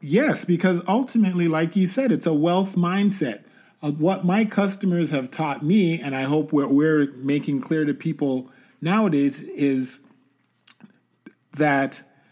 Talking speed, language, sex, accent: 135 wpm, English, male, American